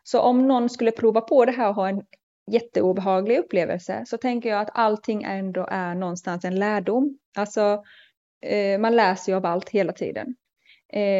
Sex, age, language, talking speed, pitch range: female, 20-39, Swedish, 165 wpm, 185-230 Hz